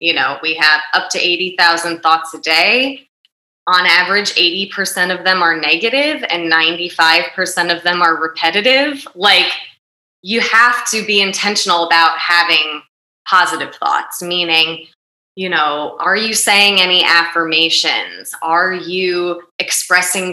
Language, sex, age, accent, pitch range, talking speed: English, female, 20-39, American, 160-190 Hz, 130 wpm